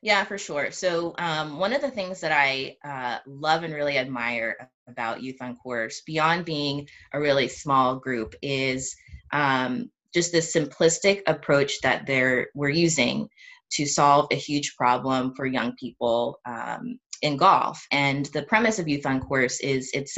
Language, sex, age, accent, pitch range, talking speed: English, female, 20-39, American, 125-155 Hz, 165 wpm